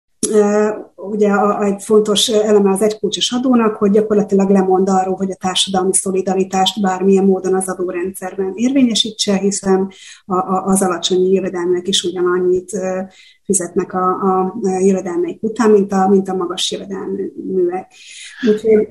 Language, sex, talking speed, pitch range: Hungarian, female, 110 wpm, 185-220 Hz